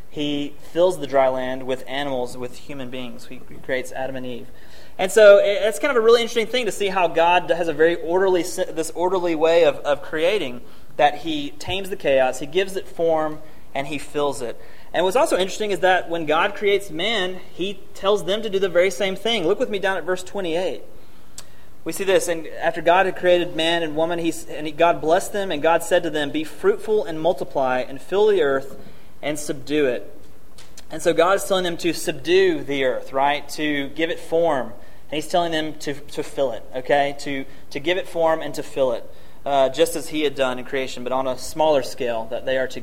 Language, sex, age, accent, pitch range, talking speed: English, male, 30-49, American, 140-190 Hz, 225 wpm